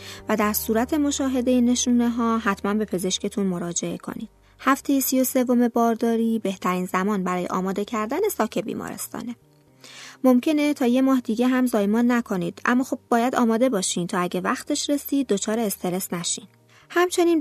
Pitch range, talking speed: 200-255 Hz, 150 wpm